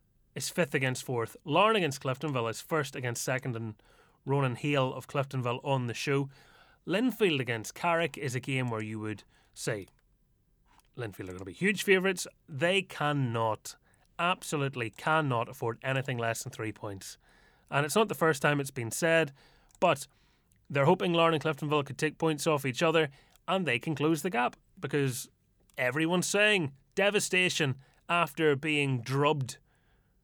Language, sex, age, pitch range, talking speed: English, male, 30-49, 130-165 Hz, 160 wpm